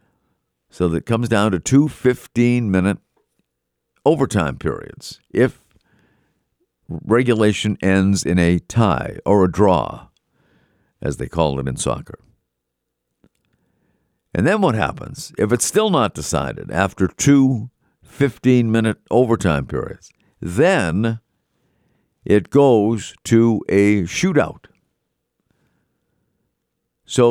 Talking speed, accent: 100 wpm, American